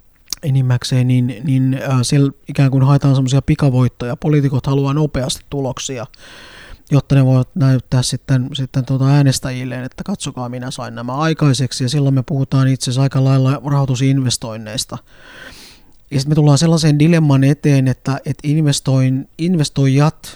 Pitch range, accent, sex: 125-145 Hz, native, male